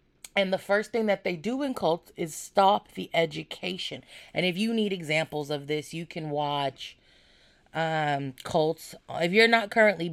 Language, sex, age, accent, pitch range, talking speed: English, female, 30-49, American, 150-185 Hz, 170 wpm